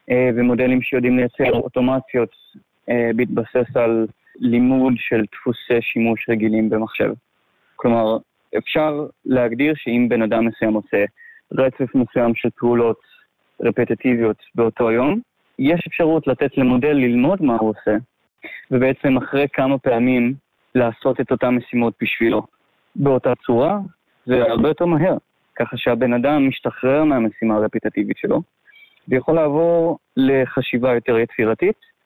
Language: Hebrew